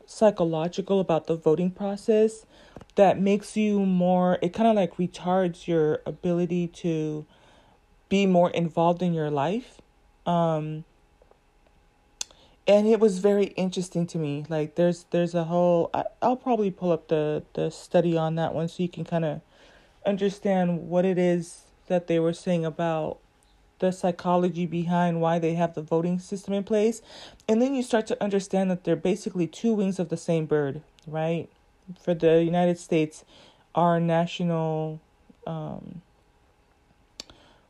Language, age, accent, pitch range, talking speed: English, 30-49, American, 165-195 Hz, 150 wpm